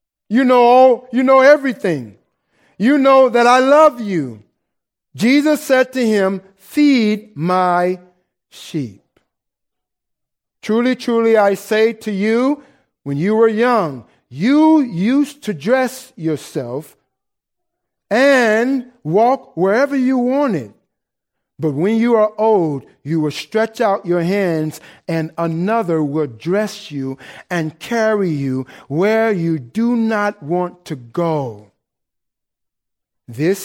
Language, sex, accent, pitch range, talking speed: English, male, American, 160-245 Hz, 115 wpm